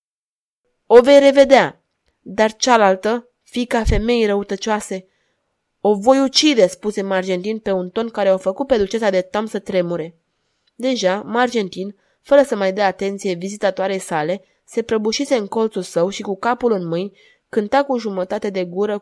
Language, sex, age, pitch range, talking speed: Romanian, female, 20-39, 185-225 Hz, 155 wpm